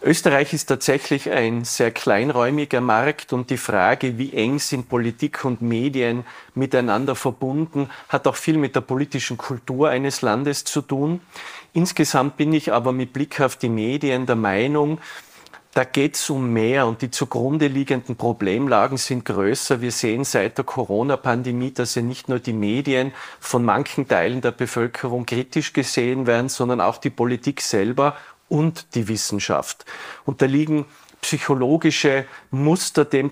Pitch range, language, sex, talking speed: 125-155 Hz, German, male, 155 wpm